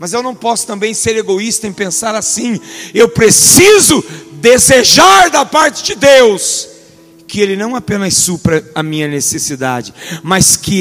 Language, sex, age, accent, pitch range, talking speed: Portuguese, male, 50-69, Brazilian, 145-225 Hz, 150 wpm